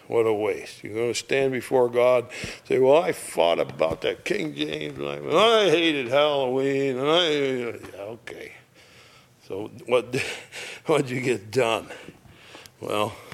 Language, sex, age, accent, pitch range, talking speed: English, male, 60-79, American, 120-165 Hz, 155 wpm